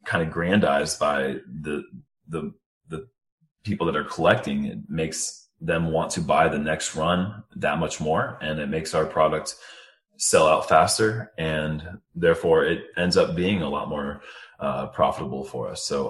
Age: 30-49